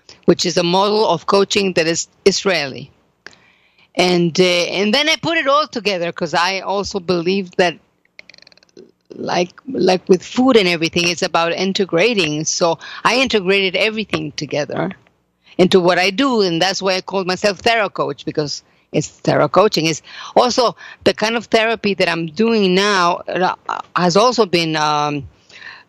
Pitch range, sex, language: 165-205 Hz, female, English